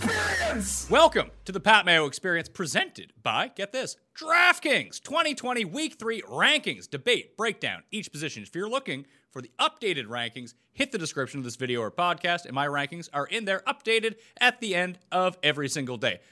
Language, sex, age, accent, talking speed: English, male, 30-49, American, 175 wpm